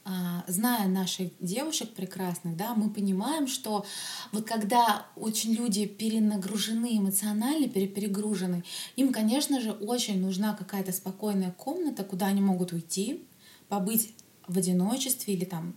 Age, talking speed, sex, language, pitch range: 20-39, 120 wpm, female, Russian, 190-225 Hz